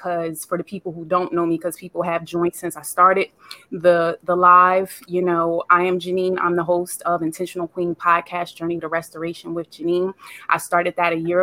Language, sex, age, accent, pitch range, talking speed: English, female, 20-39, American, 165-180 Hz, 210 wpm